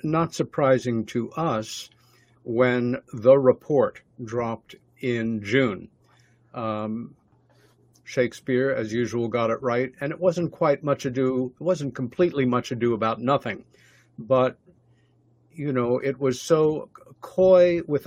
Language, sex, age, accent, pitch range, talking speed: English, male, 60-79, American, 115-135 Hz, 125 wpm